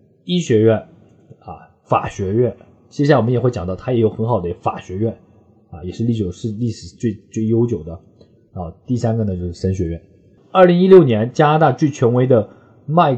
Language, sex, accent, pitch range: Chinese, male, native, 95-125 Hz